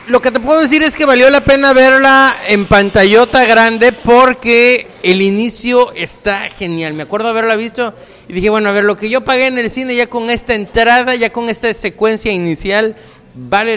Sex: male